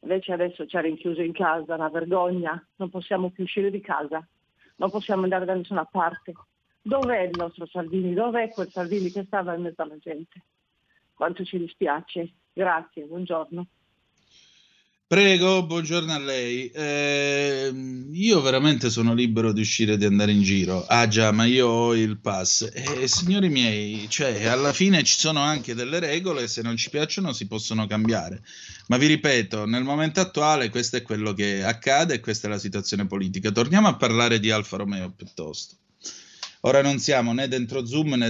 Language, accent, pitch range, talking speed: Italian, native, 115-170 Hz, 175 wpm